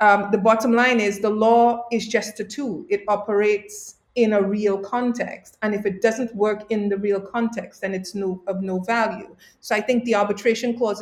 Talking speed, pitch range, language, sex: 200 wpm, 180-230 Hz, English, female